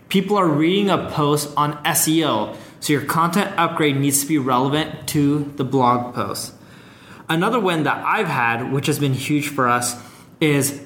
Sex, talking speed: male, 170 wpm